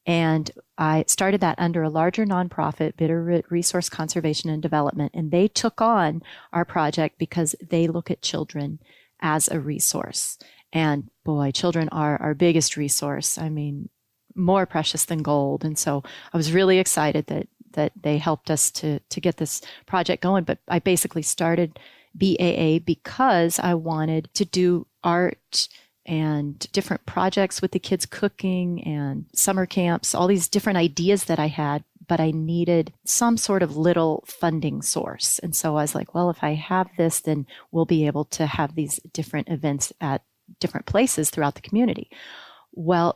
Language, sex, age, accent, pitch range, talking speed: English, female, 30-49, American, 155-180 Hz, 165 wpm